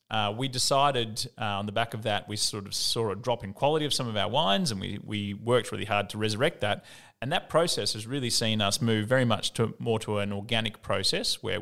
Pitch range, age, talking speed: 100-125 Hz, 30-49, 250 wpm